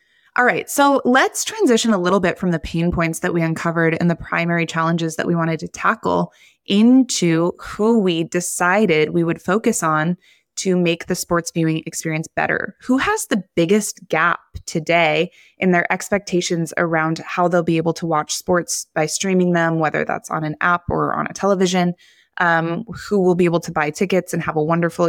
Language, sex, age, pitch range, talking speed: English, female, 20-39, 160-185 Hz, 190 wpm